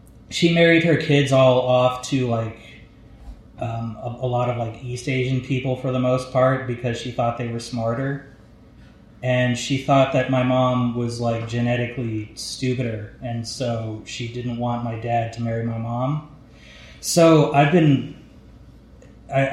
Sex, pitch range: male, 115-135 Hz